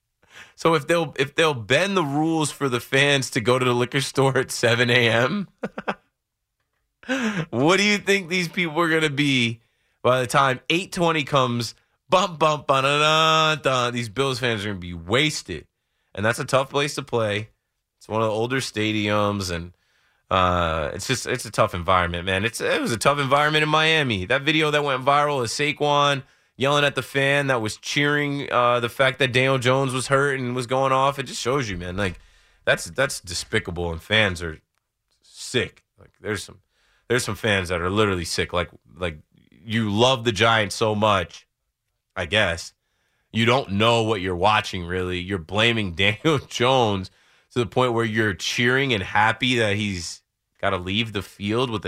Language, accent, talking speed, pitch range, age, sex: English, American, 185 wpm, 105-145 Hz, 30-49, male